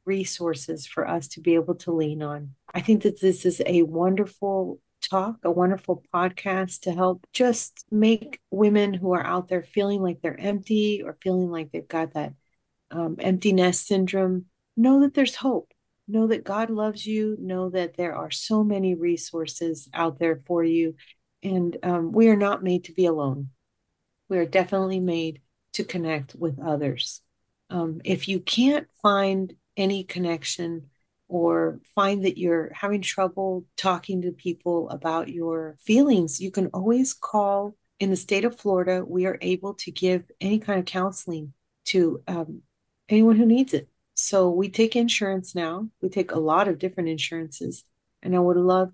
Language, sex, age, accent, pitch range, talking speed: English, female, 40-59, American, 165-195 Hz, 170 wpm